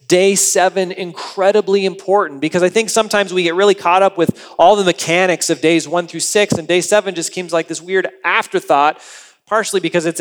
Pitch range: 150-195 Hz